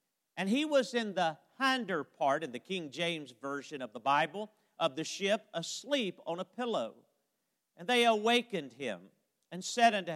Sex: male